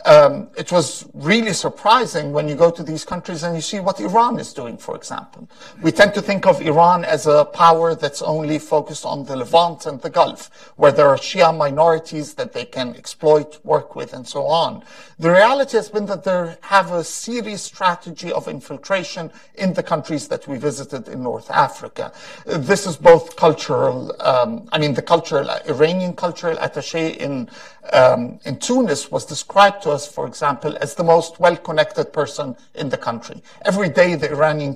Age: 50-69